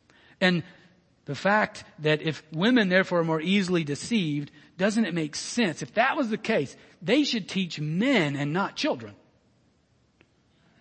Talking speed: 155 wpm